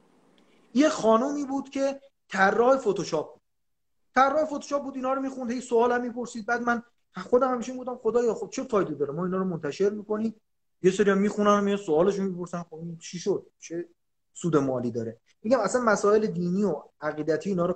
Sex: male